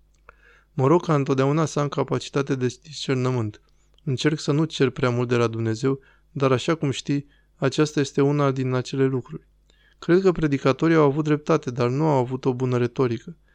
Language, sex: Romanian, male